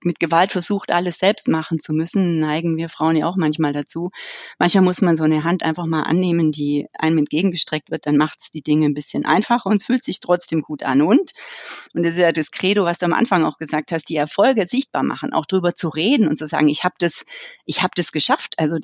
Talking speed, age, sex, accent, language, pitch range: 240 wpm, 30-49, female, German, German, 155-195 Hz